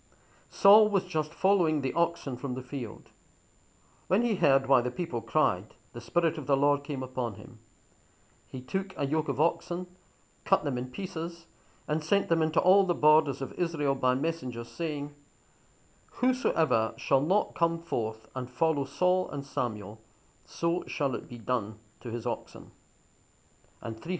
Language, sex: English, male